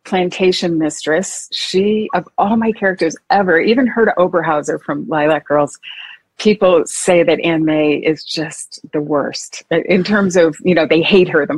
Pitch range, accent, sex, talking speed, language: 155-190 Hz, American, female, 165 wpm, English